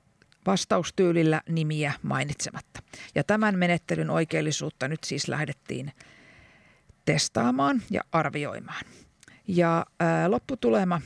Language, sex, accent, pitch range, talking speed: Finnish, female, native, 150-185 Hz, 85 wpm